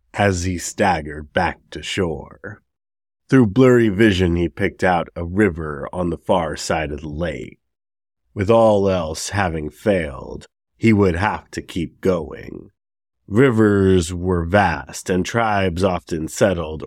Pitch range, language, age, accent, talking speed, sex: 80-100 Hz, English, 30-49, American, 140 wpm, male